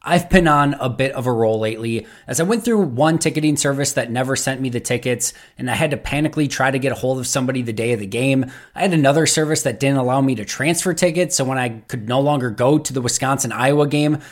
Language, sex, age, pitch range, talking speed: English, male, 20-39, 125-155 Hz, 255 wpm